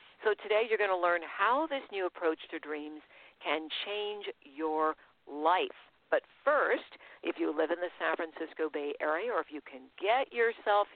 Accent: American